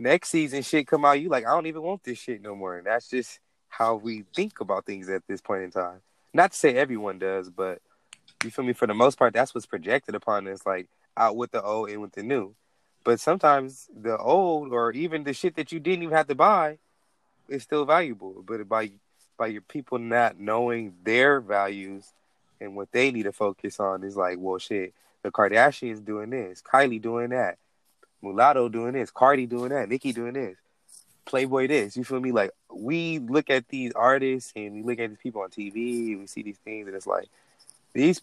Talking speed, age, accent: 215 wpm, 20-39, American